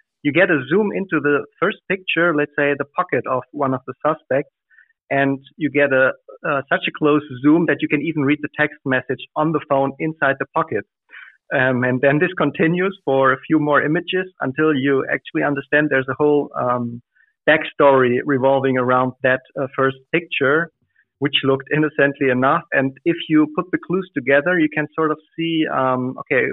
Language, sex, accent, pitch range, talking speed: English, male, German, 130-155 Hz, 190 wpm